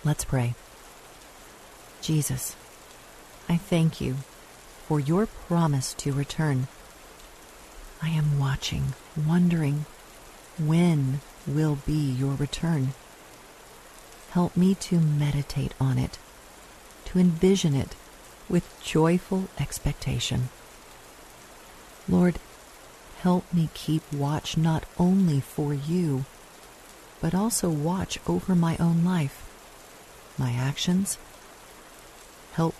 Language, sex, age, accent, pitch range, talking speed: English, female, 50-69, American, 140-170 Hz, 95 wpm